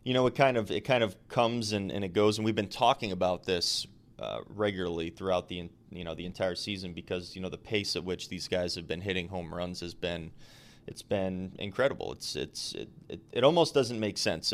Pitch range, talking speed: 95-110 Hz, 230 wpm